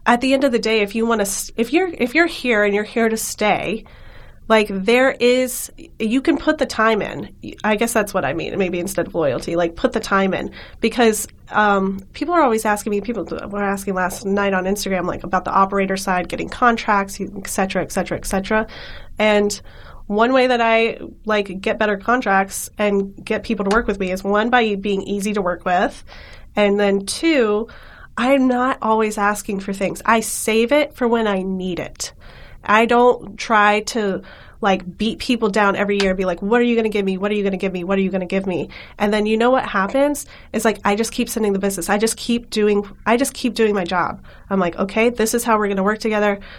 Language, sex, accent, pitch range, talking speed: English, female, American, 195-230 Hz, 240 wpm